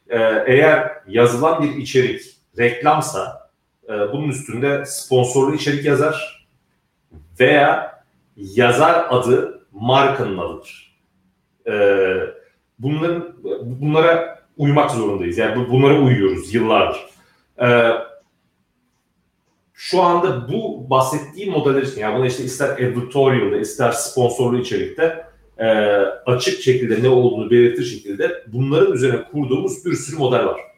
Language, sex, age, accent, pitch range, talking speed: Turkish, male, 40-59, native, 125-155 Hz, 100 wpm